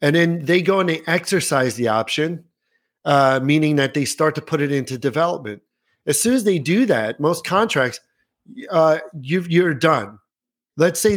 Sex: male